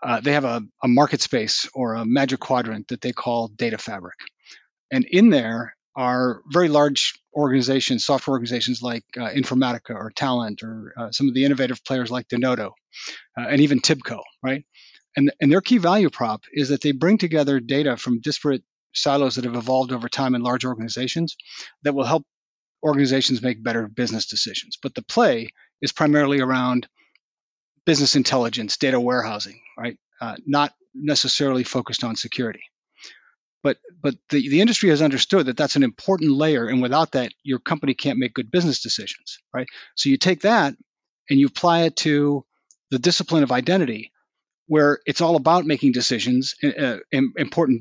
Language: English